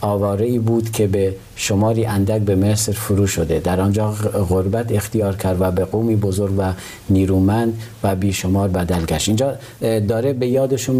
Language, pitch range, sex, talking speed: Persian, 95-110 Hz, male, 145 wpm